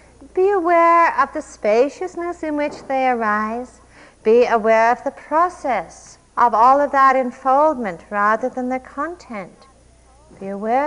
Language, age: English, 50-69